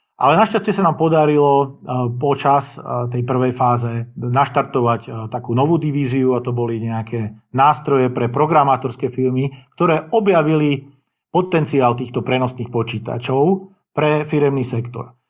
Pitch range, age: 120-145 Hz, 50-69